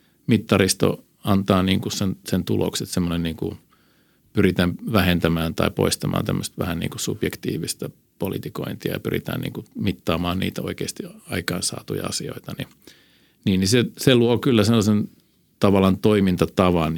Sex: male